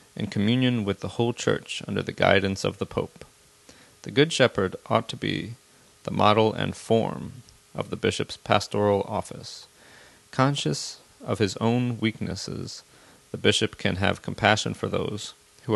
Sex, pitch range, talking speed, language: male, 100-120 Hz, 150 wpm, English